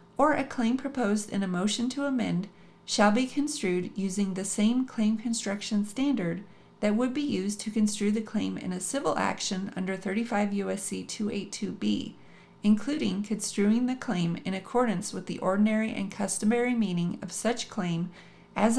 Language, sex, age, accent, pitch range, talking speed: English, female, 40-59, American, 190-230 Hz, 160 wpm